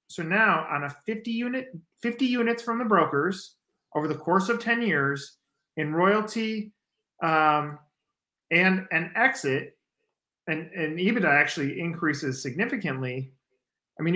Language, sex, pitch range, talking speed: English, male, 145-205 Hz, 130 wpm